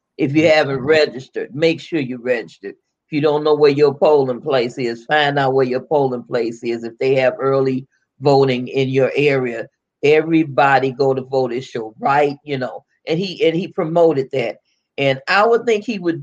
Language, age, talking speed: English, 40-59, 195 wpm